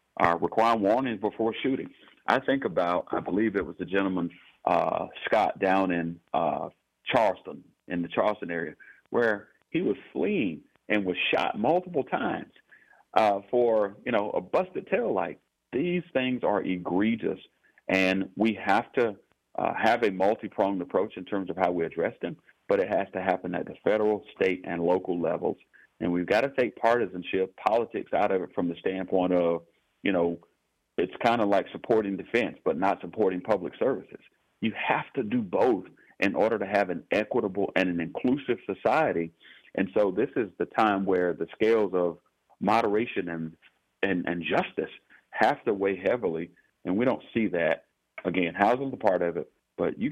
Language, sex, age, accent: English, male, 40-59, American